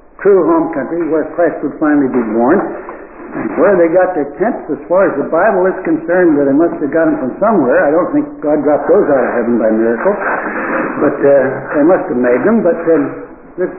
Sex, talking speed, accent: male, 220 wpm, American